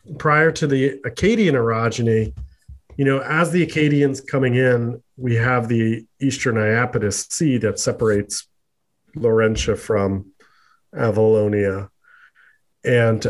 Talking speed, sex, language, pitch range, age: 110 wpm, male, English, 110-135 Hz, 40-59